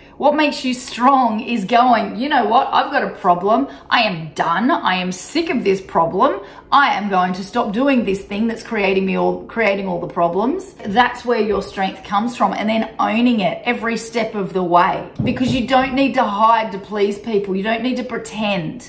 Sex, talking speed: female, 215 wpm